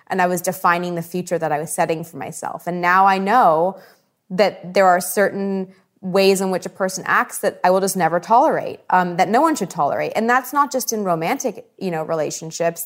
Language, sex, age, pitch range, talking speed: English, female, 20-39, 160-190 Hz, 220 wpm